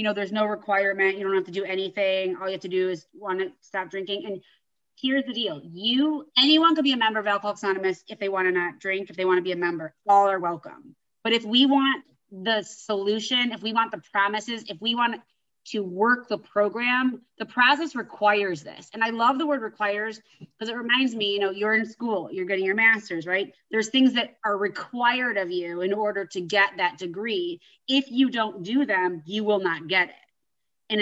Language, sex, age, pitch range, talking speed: English, female, 20-39, 195-245 Hz, 225 wpm